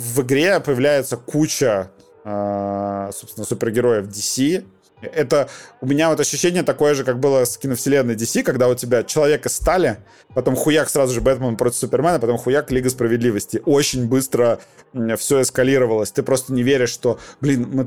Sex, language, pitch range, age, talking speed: male, Russian, 110-145 Hz, 30-49, 160 wpm